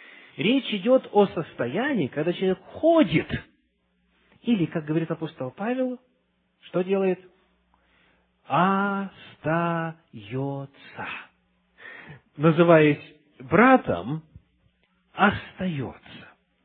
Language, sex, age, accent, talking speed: Russian, male, 40-59, native, 65 wpm